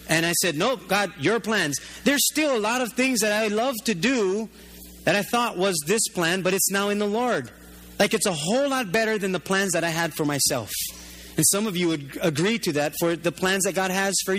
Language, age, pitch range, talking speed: English, 30-49, 160-220 Hz, 250 wpm